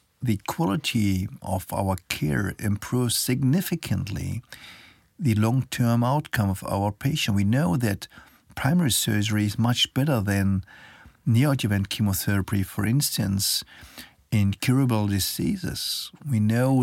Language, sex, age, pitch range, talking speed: German, male, 50-69, 105-130 Hz, 110 wpm